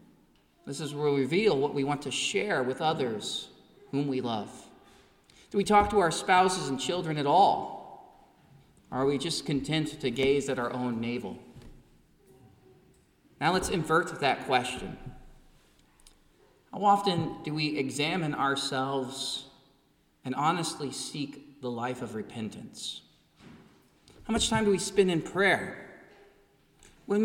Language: English